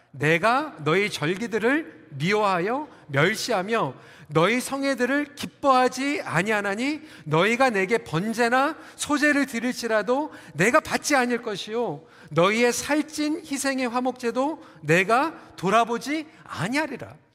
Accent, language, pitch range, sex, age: native, Korean, 165-265 Hz, male, 40-59